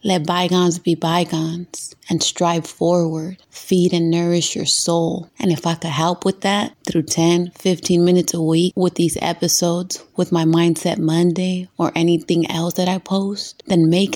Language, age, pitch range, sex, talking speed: English, 20-39, 165-185 Hz, female, 170 wpm